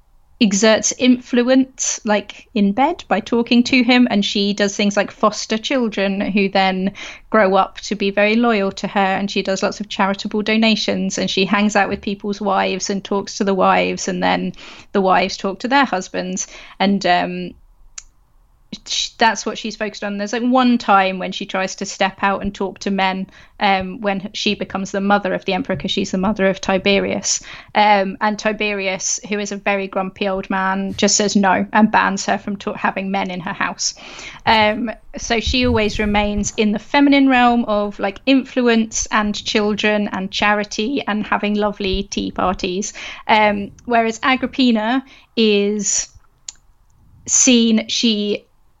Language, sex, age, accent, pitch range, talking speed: English, female, 30-49, British, 195-220 Hz, 170 wpm